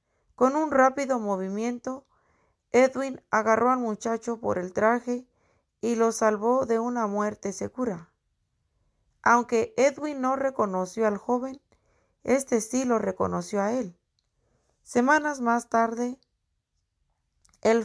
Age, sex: 40-59, female